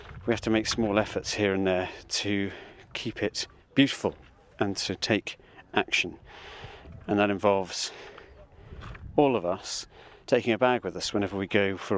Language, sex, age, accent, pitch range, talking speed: English, male, 40-59, British, 95-120 Hz, 160 wpm